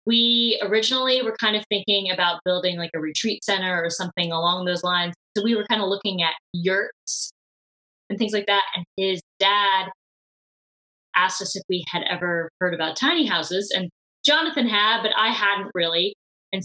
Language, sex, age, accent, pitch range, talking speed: English, female, 20-39, American, 180-225 Hz, 180 wpm